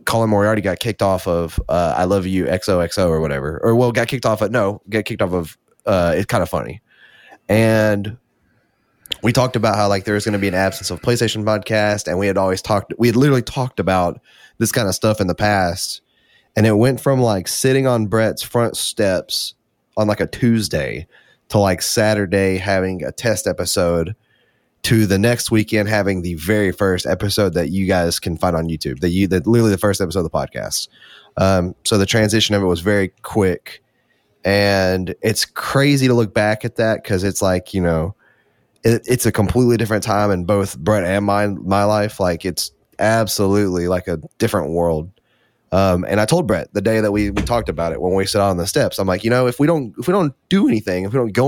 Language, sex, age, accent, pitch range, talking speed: English, male, 20-39, American, 95-115 Hz, 215 wpm